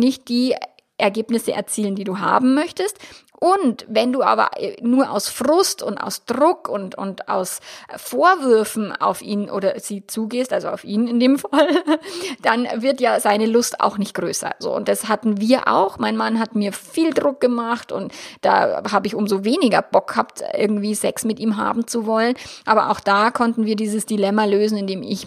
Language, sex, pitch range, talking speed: German, female, 205-240 Hz, 190 wpm